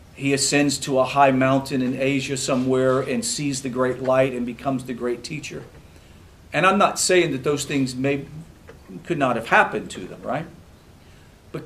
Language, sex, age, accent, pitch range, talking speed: English, male, 40-59, American, 115-165 Hz, 180 wpm